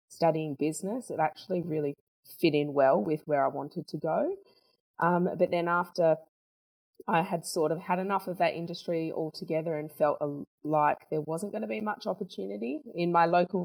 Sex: female